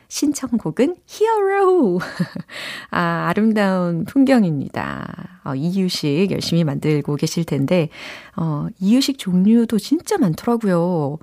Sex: female